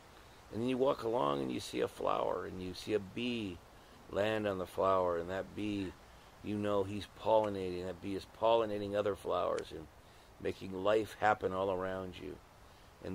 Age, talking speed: 50-69, 185 wpm